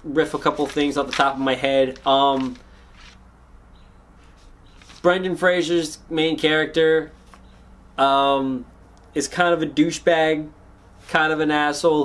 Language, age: English, 20-39